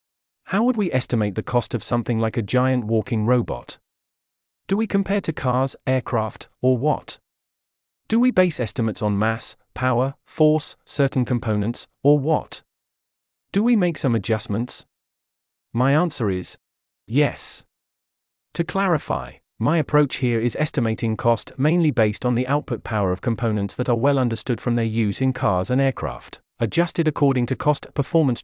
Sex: male